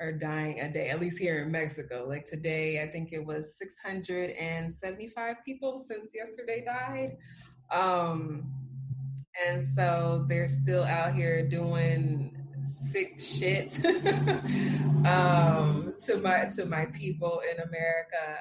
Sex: female